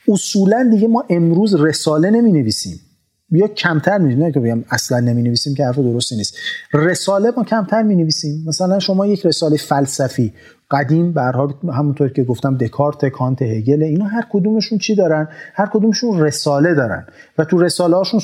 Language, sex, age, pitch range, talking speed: English, male, 40-59, 130-170 Hz, 170 wpm